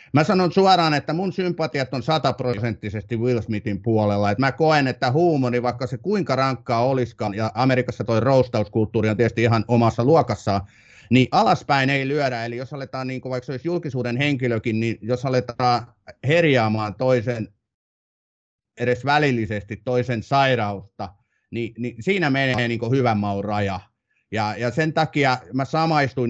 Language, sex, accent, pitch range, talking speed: Finnish, male, native, 110-135 Hz, 150 wpm